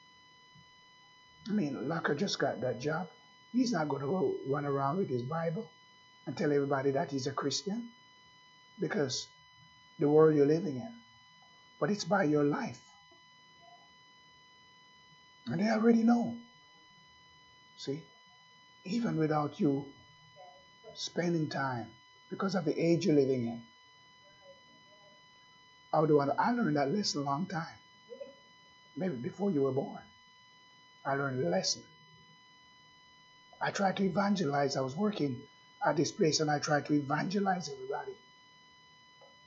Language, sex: English, male